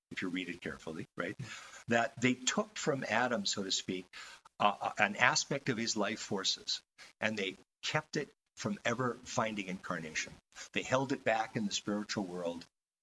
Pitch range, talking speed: 95-125 Hz, 170 wpm